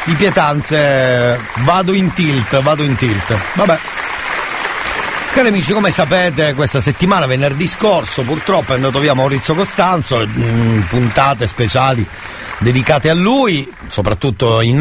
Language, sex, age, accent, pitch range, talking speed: Italian, male, 50-69, native, 115-160 Hz, 120 wpm